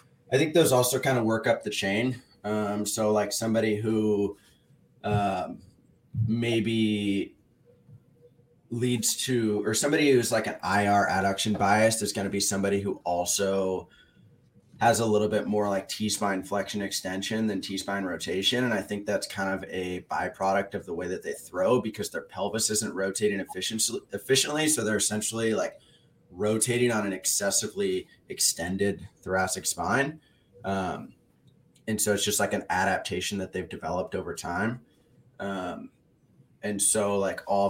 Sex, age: male, 20-39